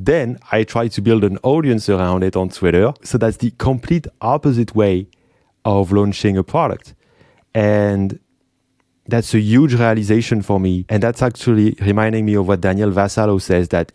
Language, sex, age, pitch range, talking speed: English, male, 30-49, 95-120 Hz, 170 wpm